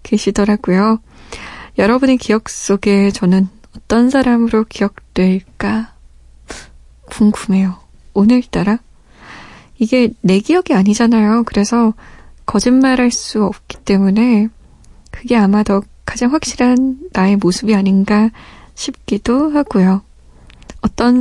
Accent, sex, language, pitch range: native, female, Korean, 195-250 Hz